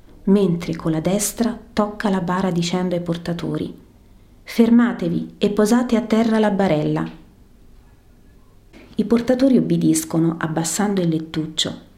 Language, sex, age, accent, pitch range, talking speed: Italian, female, 30-49, native, 125-195 Hz, 115 wpm